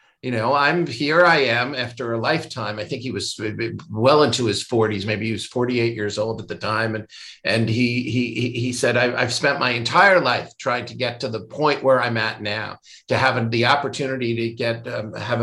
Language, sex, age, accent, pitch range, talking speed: English, male, 50-69, American, 115-145 Hz, 215 wpm